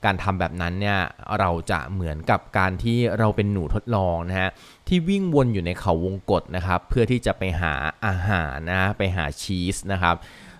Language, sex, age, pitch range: Thai, male, 20-39, 90-115 Hz